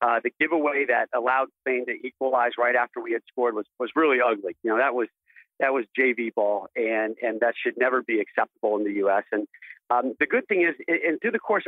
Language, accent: English, American